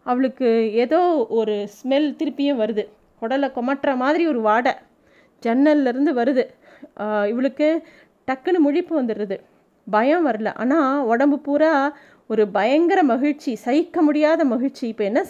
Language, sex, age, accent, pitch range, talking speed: Tamil, female, 20-39, native, 230-285 Hz, 120 wpm